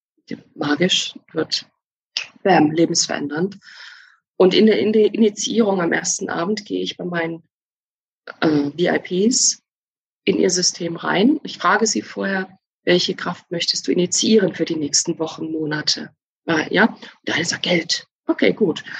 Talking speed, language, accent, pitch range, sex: 140 wpm, German, German, 175-220 Hz, female